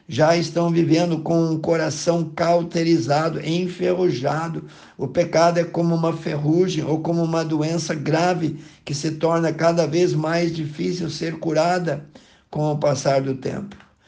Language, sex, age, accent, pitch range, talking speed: Portuguese, male, 50-69, Brazilian, 150-170 Hz, 145 wpm